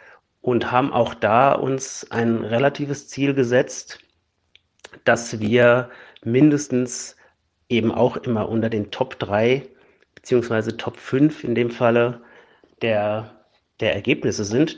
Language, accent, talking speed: German, German, 120 wpm